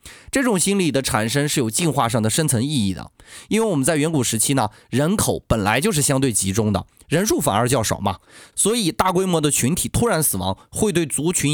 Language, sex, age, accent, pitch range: Chinese, male, 20-39, native, 110-180 Hz